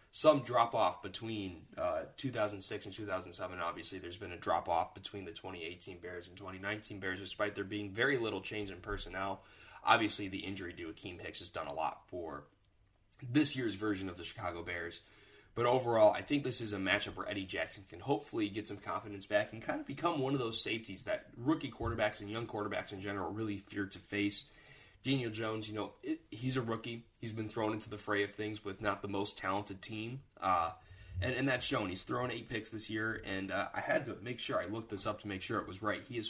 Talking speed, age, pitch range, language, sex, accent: 220 wpm, 20-39, 100-115 Hz, English, male, American